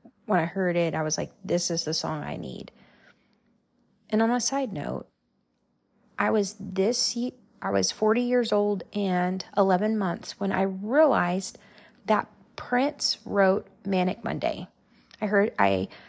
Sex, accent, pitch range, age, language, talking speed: female, American, 190-220 Hz, 30-49, English, 150 wpm